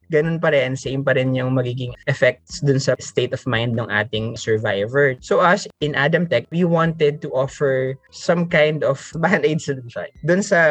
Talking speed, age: 180 wpm, 20-39